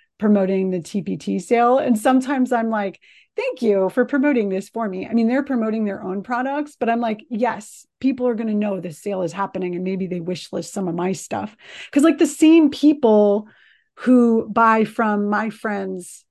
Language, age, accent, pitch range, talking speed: English, 30-49, American, 195-235 Hz, 195 wpm